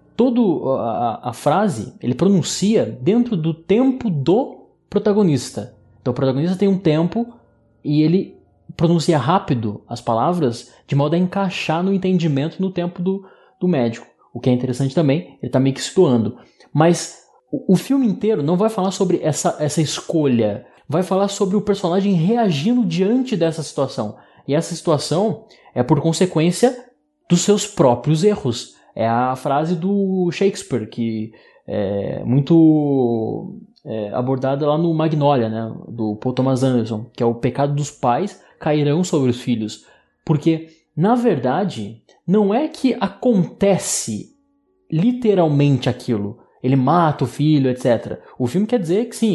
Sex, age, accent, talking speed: male, 20-39, Brazilian, 150 wpm